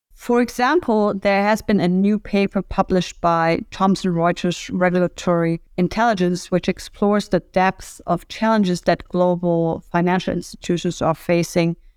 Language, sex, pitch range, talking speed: English, female, 170-200 Hz, 130 wpm